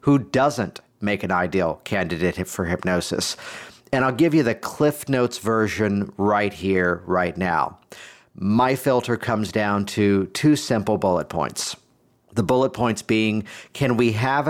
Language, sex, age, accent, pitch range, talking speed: English, male, 50-69, American, 100-125 Hz, 150 wpm